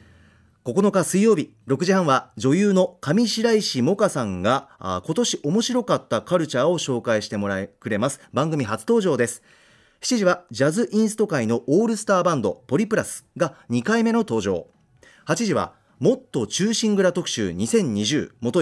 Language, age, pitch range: Japanese, 40-59, 130-210 Hz